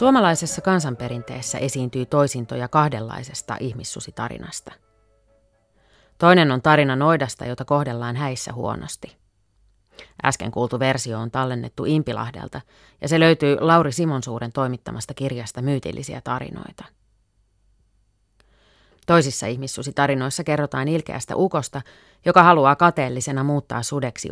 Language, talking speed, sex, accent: Finnish, 95 wpm, female, native